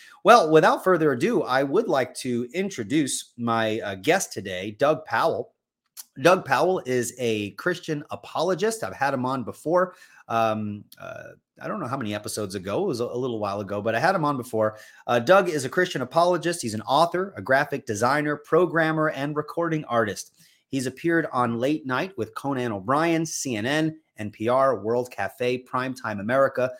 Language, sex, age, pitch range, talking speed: English, male, 30-49, 115-155 Hz, 175 wpm